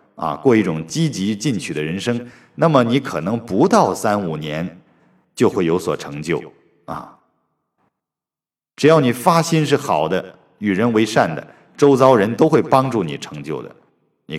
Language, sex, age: Chinese, male, 50-69